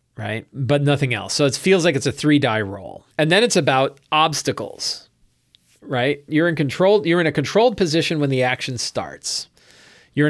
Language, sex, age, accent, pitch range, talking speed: English, male, 40-59, American, 115-165 Hz, 185 wpm